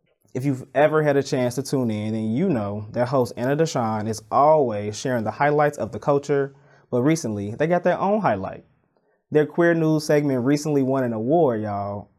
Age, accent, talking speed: 20-39, American, 195 wpm